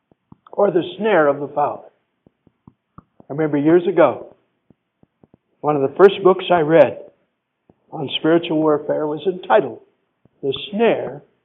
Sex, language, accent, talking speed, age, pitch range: male, English, American, 125 wpm, 60-79, 160-270 Hz